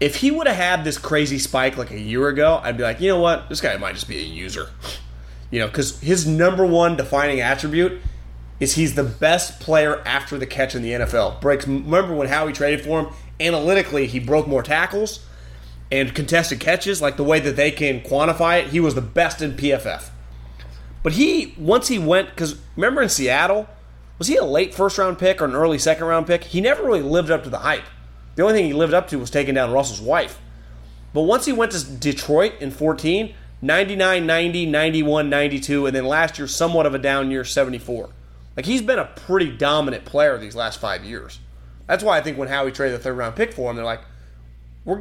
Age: 30-49